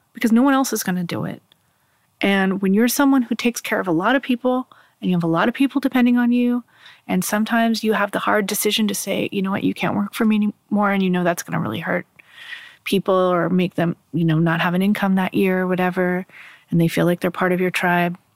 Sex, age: female, 30-49